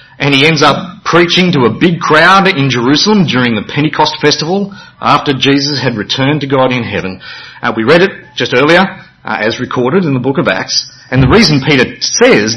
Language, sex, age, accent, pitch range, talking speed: English, male, 40-59, Australian, 125-170 Hz, 200 wpm